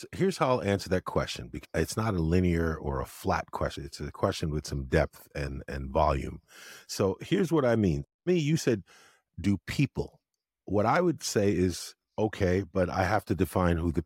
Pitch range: 85-120 Hz